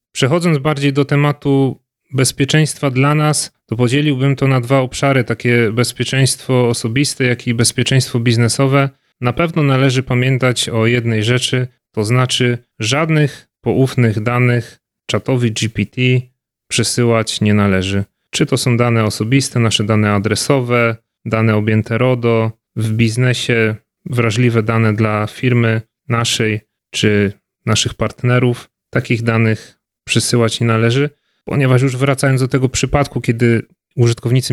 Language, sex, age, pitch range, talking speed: Polish, male, 30-49, 115-130 Hz, 125 wpm